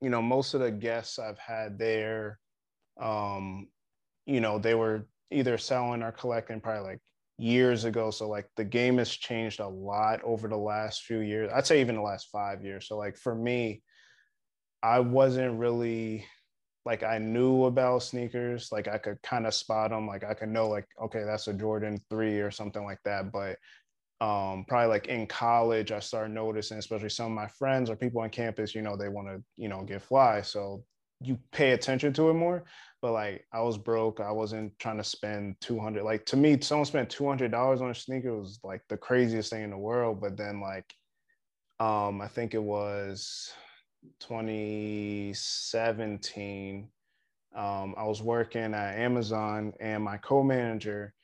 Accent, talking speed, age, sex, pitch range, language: American, 180 wpm, 20-39, male, 105-120 Hz, English